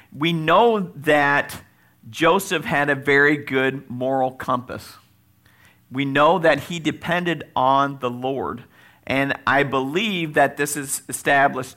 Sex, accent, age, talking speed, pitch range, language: male, American, 50-69, 125 wpm, 125-155 Hz, English